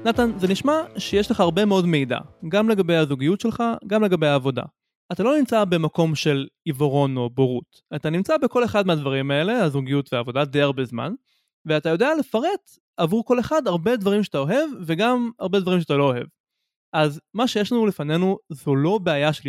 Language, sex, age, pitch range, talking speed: Hebrew, male, 20-39, 150-220 Hz, 180 wpm